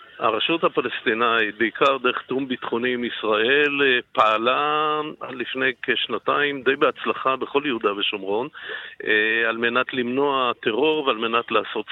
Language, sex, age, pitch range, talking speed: Hebrew, male, 50-69, 125-155 Hz, 115 wpm